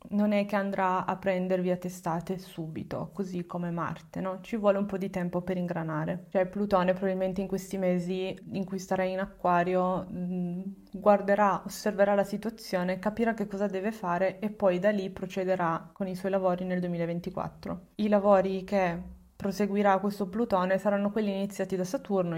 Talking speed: 170 wpm